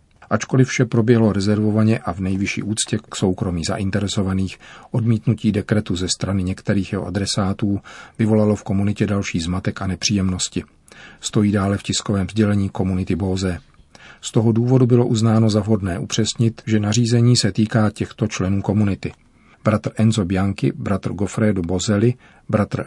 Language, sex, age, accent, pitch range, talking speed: Czech, male, 40-59, native, 95-110 Hz, 140 wpm